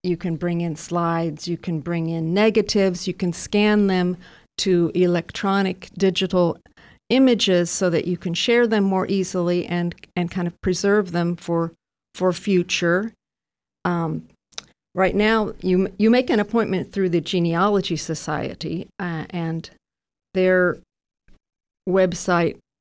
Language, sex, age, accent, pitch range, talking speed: English, female, 50-69, American, 165-195 Hz, 135 wpm